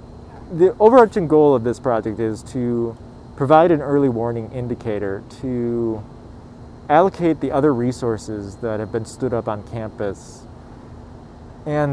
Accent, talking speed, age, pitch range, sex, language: American, 130 wpm, 20-39, 115-140 Hz, male, English